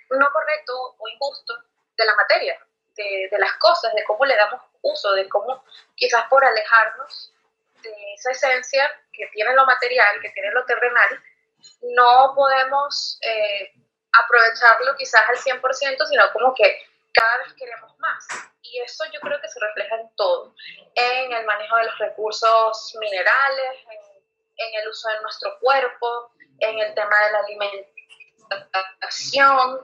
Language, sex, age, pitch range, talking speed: Spanish, female, 20-39, 215-290 Hz, 150 wpm